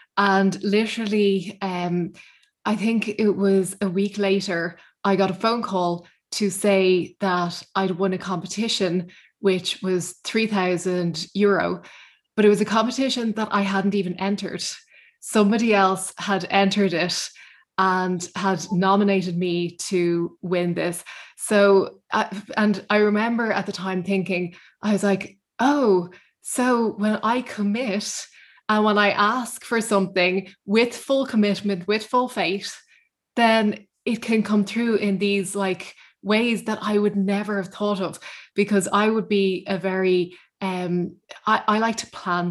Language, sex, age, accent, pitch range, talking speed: English, female, 20-39, Irish, 185-210 Hz, 145 wpm